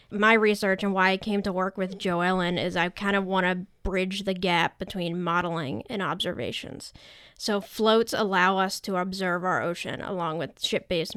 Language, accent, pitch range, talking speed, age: English, American, 180-205 Hz, 190 wpm, 10-29